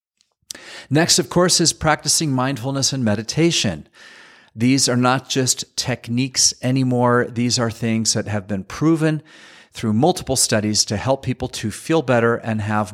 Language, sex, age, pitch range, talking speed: English, male, 40-59, 110-145 Hz, 150 wpm